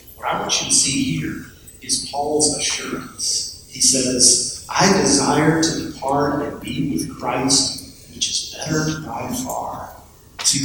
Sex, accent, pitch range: male, American, 155-210 Hz